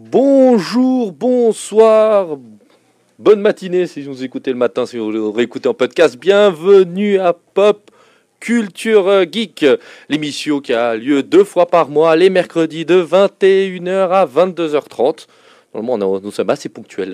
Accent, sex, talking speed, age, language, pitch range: French, male, 140 wpm, 40-59, French, 120-195 Hz